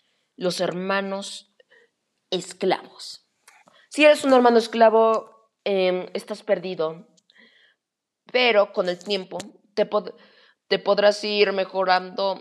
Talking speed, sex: 95 wpm, female